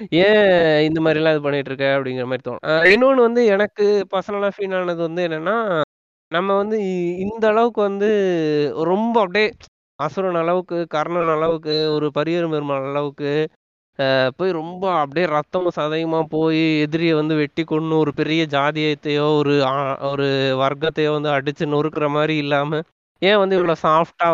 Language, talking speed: Tamil, 135 wpm